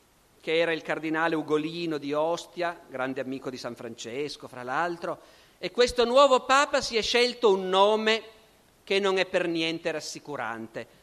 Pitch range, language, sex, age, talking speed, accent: 165-205 Hz, Italian, male, 50-69, 160 wpm, native